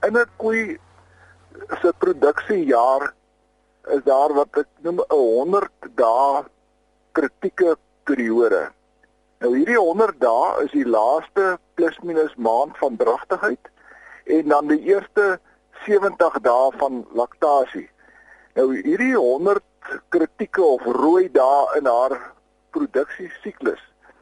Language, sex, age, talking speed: English, male, 50-69, 105 wpm